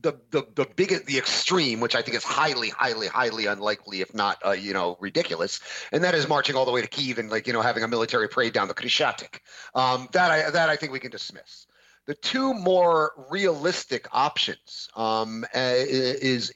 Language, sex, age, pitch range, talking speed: English, male, 40-59, 120-150 Hz, 205 wpm